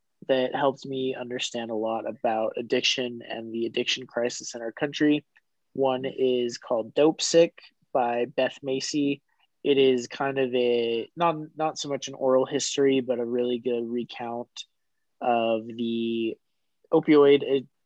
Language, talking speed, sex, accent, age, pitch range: English, 145 wpm, male, American, 20-39, 120-135 Hz